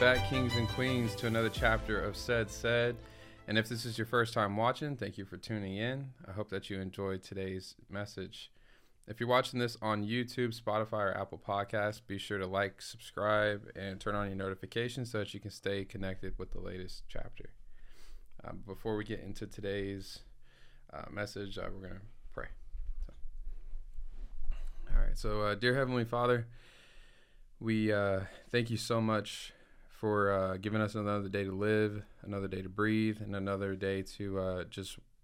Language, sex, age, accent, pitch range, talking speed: English, male, 20-39, American, 95-110 Hz, 175 wpm